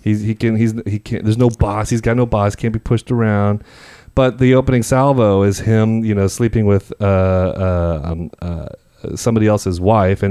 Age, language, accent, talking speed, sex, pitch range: 30-49, English, American, 205 wpm, male, 95-115 Hz